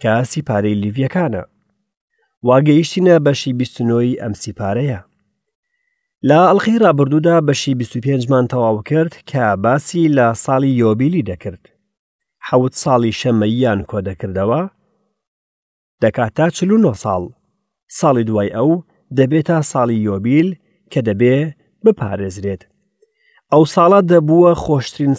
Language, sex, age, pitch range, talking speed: English, male, 40-59, 110-165 Hz, 120 wpm